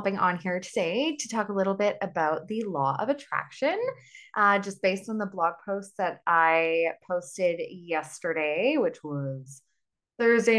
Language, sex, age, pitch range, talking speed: English, female, 20-39, 180-250 Hz, 155 wpm